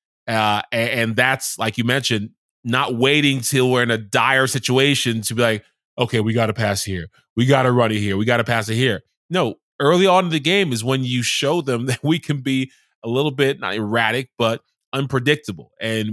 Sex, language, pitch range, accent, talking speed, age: male, English, 110-130 Hz, American, 215 wpm, 20-39